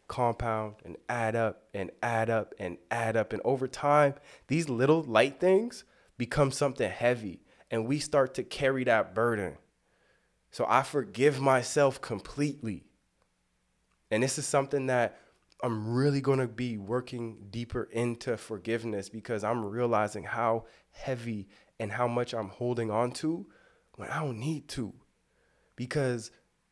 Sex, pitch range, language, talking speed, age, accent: male, 110-145 Hz, English, 145 wpm, 20-39, American